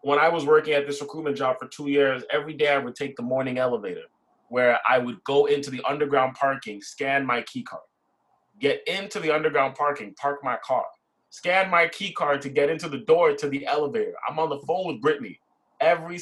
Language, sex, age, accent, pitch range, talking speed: English, male, 20-39, American, 135-205 Hz, 215 wpm